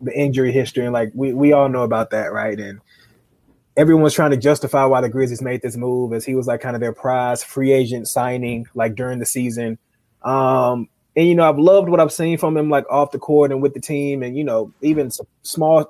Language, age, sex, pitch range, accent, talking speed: English, 20-39, male, 125-155 Hz, American, 240 wpm